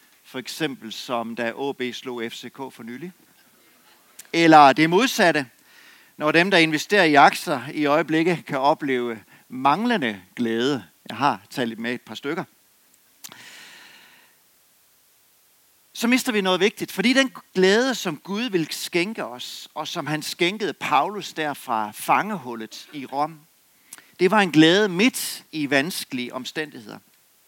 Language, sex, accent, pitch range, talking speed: Danish, male, native, 145-205 Hz, 135 wpm